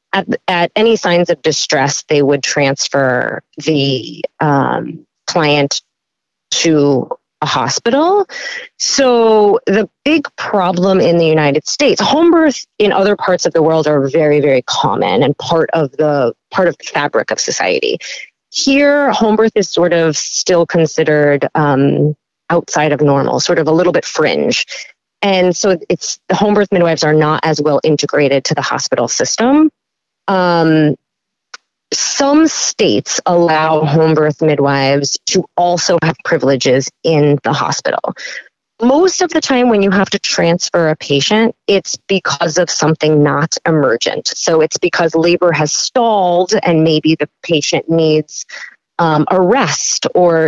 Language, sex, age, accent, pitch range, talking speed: English, female, 30-49, American, 155-205 Hz, 150 wpm